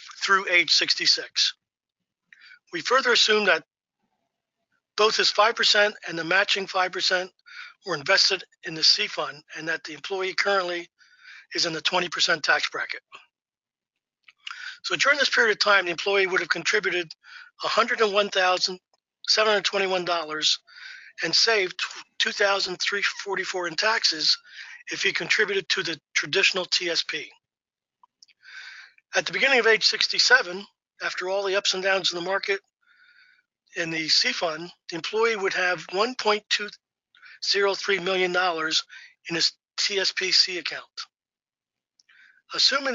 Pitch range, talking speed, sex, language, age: 180-270 Hz, 135 wpm, male, English, 50-69